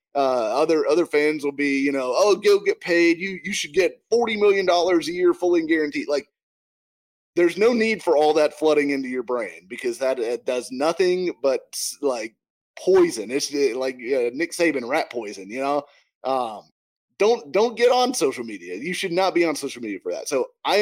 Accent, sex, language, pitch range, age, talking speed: American, male, English, 140-205 Hz, 20-39, 195 wpm